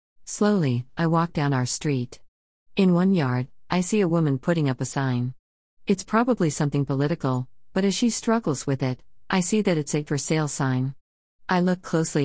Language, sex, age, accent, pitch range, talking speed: English, female, 50-69, American, 130-180 Hz, 185 wpm